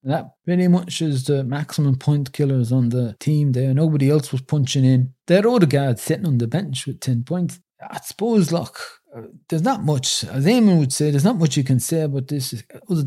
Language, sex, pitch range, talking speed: English, male, 105-155 Hz, 215 wpm